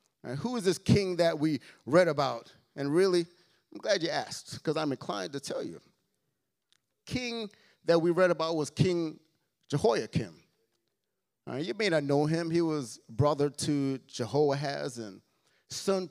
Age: 30-49